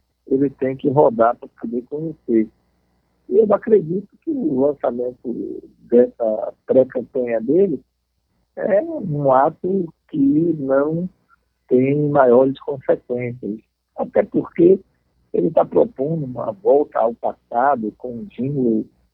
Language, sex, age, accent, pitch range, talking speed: Portuguese, male, 60-79, Brazilian, 115-140 Hz, 115 wpm